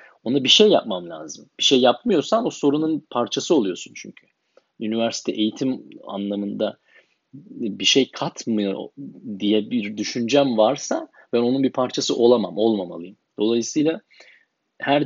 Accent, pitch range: native, 110-155 Hz